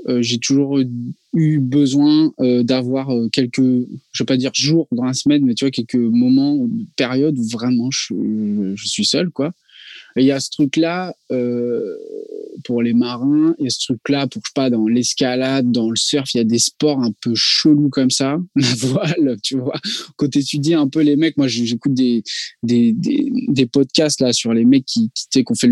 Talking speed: 210 wpm